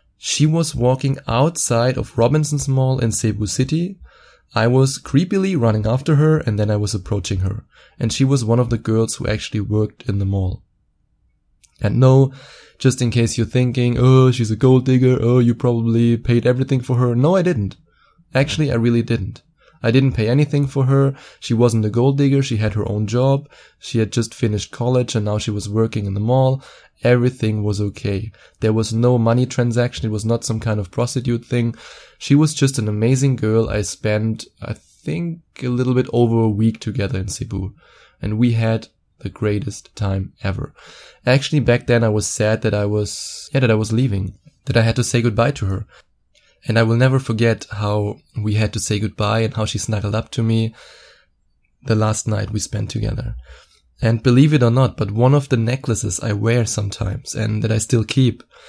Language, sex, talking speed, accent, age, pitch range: English, male, 200 wpm, German, 20-39, 110-130 Hz